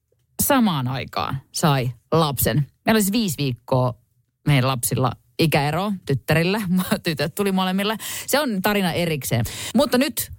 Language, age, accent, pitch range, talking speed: Finnish, 30-49, native, 125-190 Hz, 120 wpm